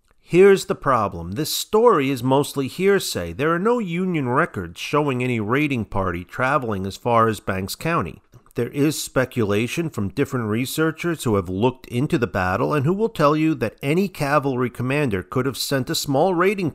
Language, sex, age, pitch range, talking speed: English, male, 50-69, 110-160 Hz, 180 wpm